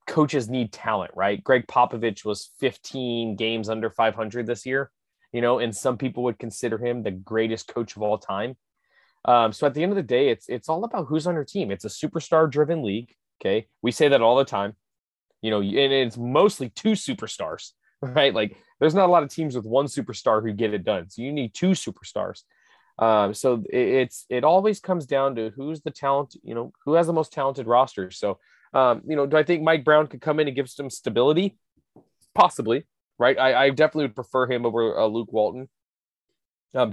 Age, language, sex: 20-39, English, male